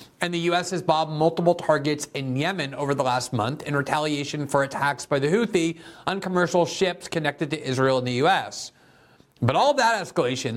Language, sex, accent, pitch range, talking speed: English, male, American, 140-180 Hz, 185 wpm